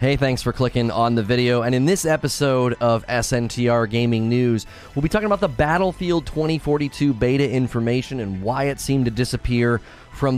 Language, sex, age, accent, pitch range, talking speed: English, male, 30-49, American, 110-145 Hz, 180 wpm